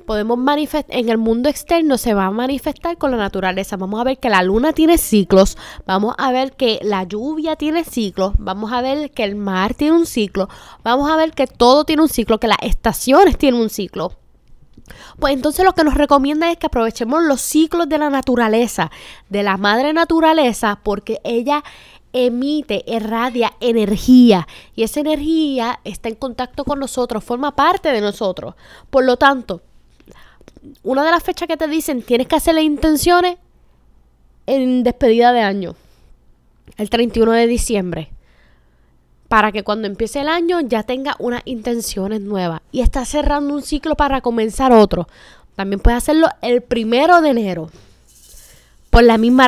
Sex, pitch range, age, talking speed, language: female, 225-310 Hz, 10-29, 170 wpm, Spanish